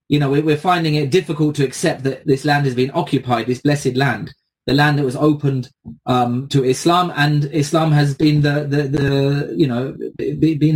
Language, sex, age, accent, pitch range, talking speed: English, male, 20-39, British, 135-165 Hz, 195 wpm